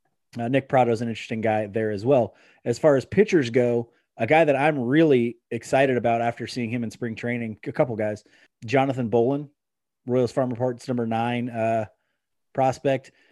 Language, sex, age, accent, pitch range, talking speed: English, male, 30-49, American, 115-145 Hz, 180 wpm